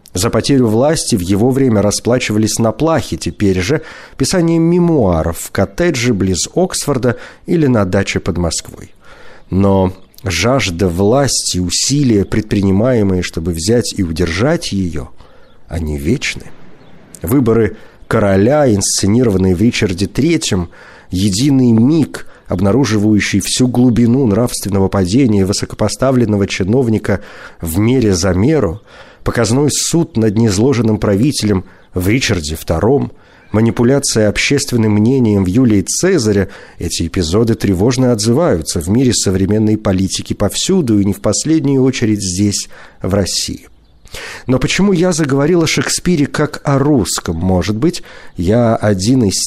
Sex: male